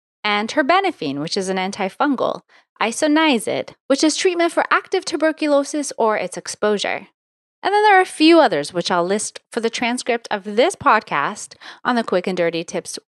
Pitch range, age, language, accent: 180-290 Hz, 30-49, English, American